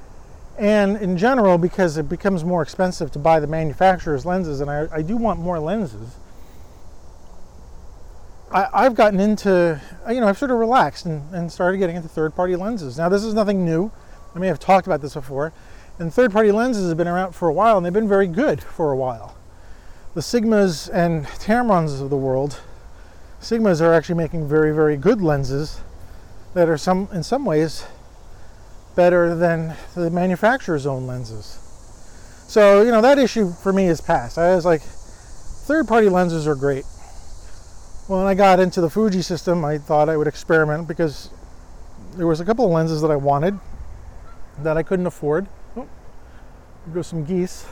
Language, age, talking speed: English, 40-59, 175 wpm